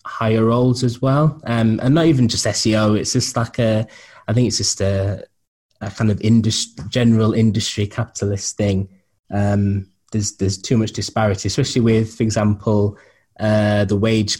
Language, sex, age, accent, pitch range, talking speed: English, male, 10-29, British, 100-115 Hz, 165 wpm